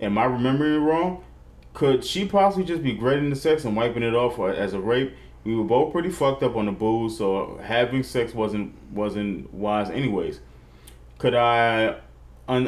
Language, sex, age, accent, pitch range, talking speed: English, male, 20-39, American, 95-125 Hz, 185 wpm